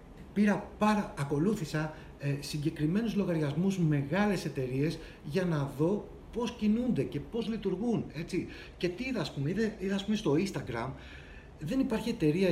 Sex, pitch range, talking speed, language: male, 150-200 Hz, 140 wpm, Greek